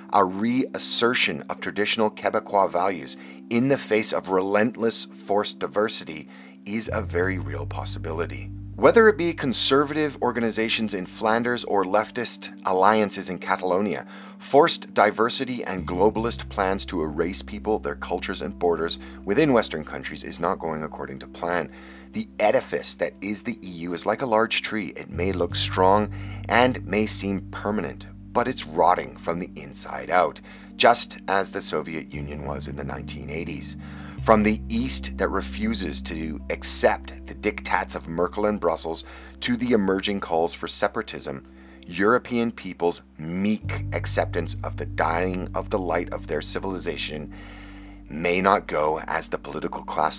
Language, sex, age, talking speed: English, male, 40-59, 150 wpm